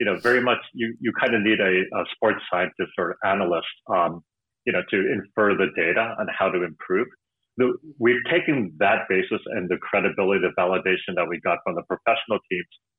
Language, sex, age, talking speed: English, male, 40-59, 200 wpm